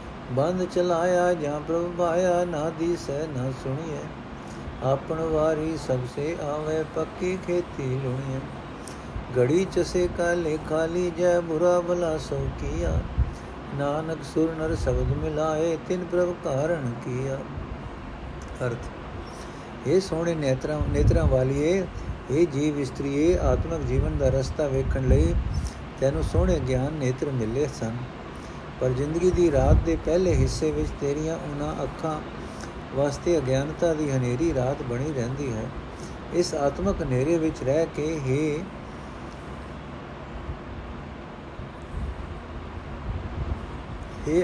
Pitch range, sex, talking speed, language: 125-165 Hz, male, 110 wpm, Punjabi